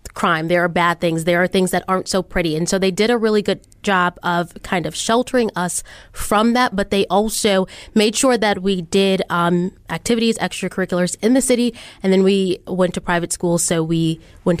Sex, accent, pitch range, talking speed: female, American, 180-225 Hz, 210 wpm